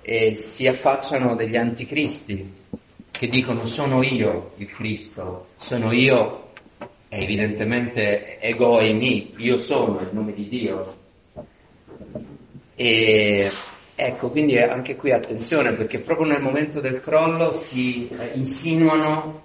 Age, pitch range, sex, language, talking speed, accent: 40-59, 105-130 Hz, male, English, 120 wpm, Italian